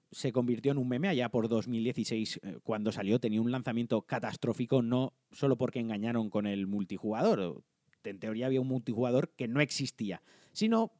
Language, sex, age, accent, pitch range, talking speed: Spanish, male, 30-49, Spanish, 115-140 Hz, 165 wpm